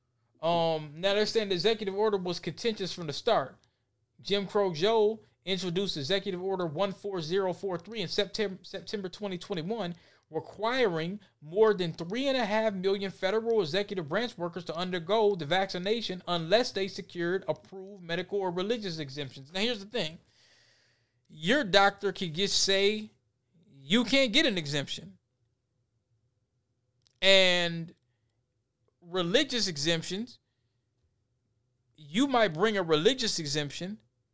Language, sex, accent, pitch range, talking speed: English, male, American, 125-205 Hz, 130 wpm